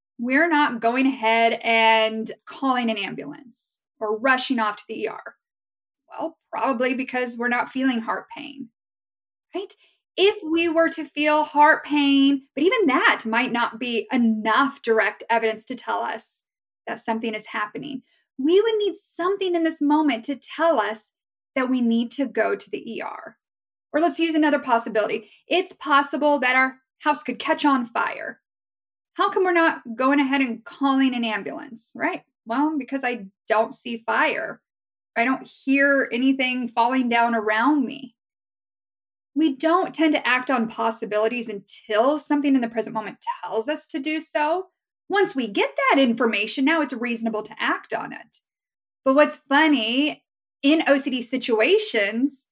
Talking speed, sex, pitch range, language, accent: 160 wpm, female, 230-300 Hz, English, American